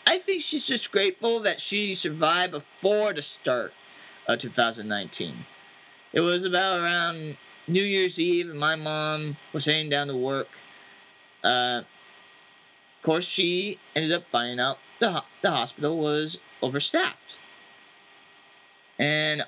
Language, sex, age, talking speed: English, male, 30-49, 130 wpm